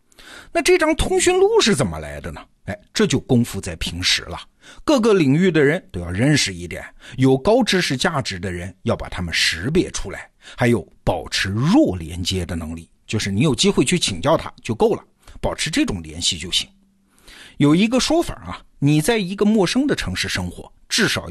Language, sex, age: Chinese, male, 50-69